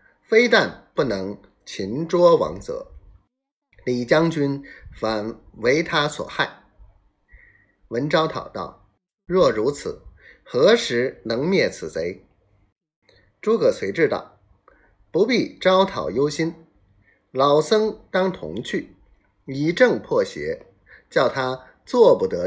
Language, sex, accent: Chinese, male, native